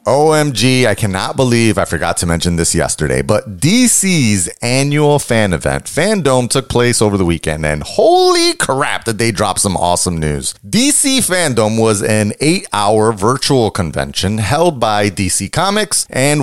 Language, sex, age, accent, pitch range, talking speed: English, male, 30-49, American, 100-155 Hz, 155 wpm